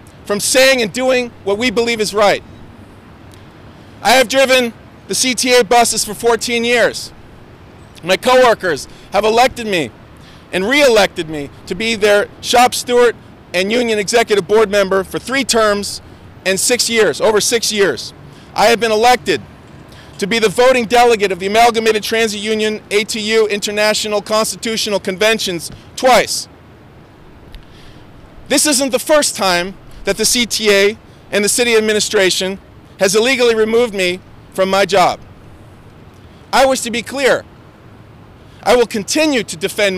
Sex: male